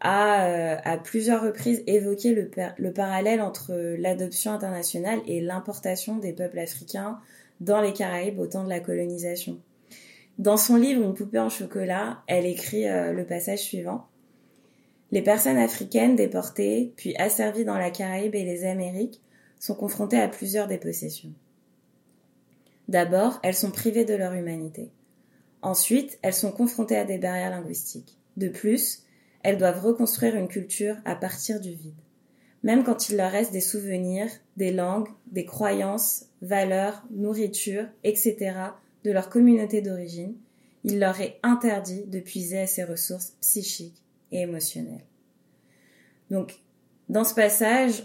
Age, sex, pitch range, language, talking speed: 20-39, female, 180-215 Hz, French, 145 wpm